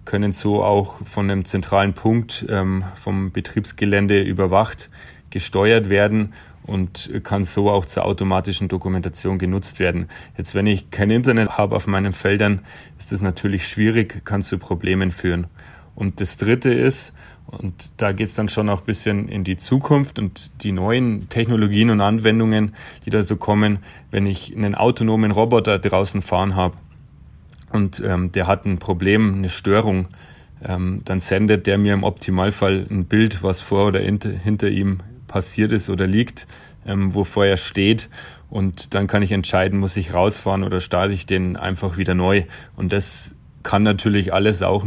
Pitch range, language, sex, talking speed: 90-105 Hz, German, male, 165 wpm